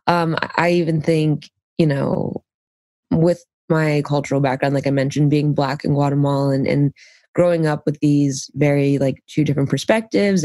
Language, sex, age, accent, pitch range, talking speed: English, female, 20-39, American, 140-165 Hz, 160 wpm